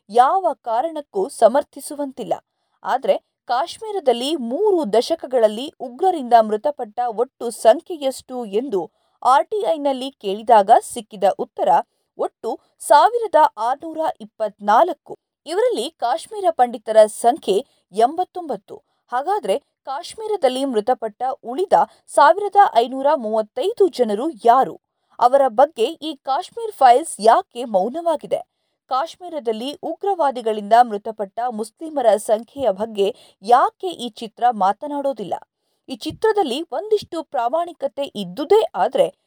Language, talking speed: Kannada, 85 wpm